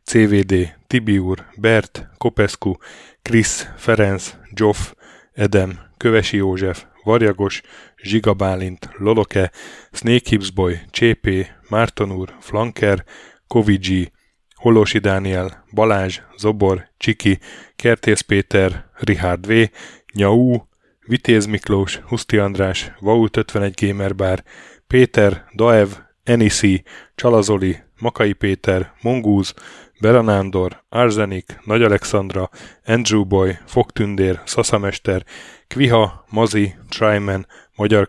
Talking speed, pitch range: 85 wpm, 95-115 Hz